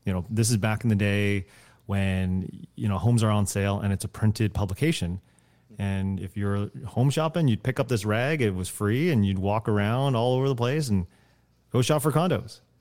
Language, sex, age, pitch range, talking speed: English, male, 30-49, 100-135 Hz, 215 wpm